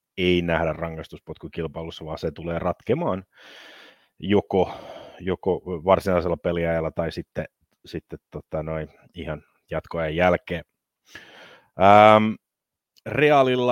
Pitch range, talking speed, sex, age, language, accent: 85-95 Hz, 90 wpm, male, 30-49, Finnish, native